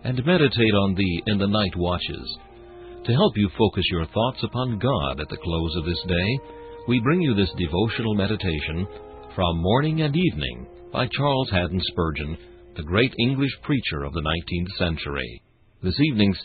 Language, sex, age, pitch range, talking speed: English, male, 60-79, 85-110 Hz, 170 wpm